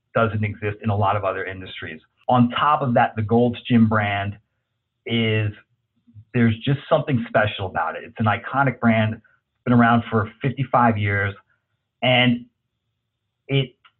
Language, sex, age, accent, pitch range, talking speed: English, male, 40-59, American, 110-130 Hz, 145 wpm